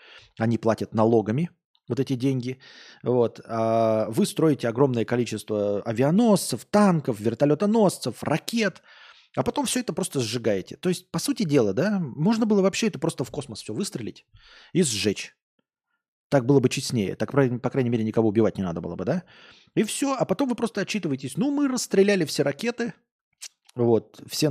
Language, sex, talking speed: Russian, male, 165 wpm